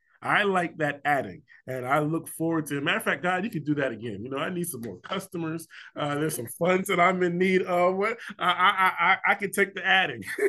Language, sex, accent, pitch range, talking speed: English, male, American, 140-185 Hz, 240 wpm